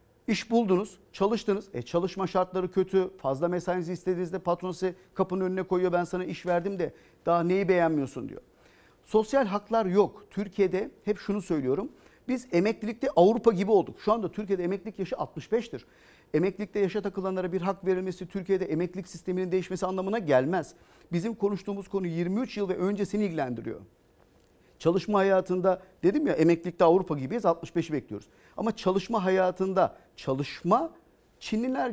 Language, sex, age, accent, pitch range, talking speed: Turkish, male, 50-69, native, 175-215 Hz, 140 wpm